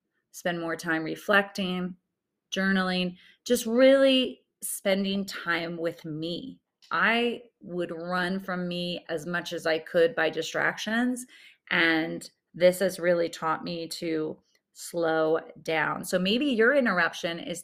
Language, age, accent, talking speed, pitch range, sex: English, 30-49, American, 125 wpm, 170-205 Hz, female